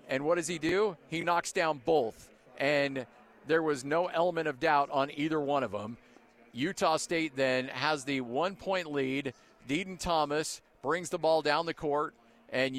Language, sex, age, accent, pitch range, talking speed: English, male, 40-59, American, 135-165 Hz, 175 wpm